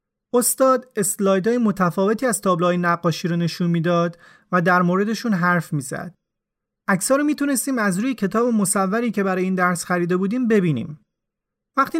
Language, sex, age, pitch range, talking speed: Persian, male, 30-49, 180-230 Hz, 145 wpm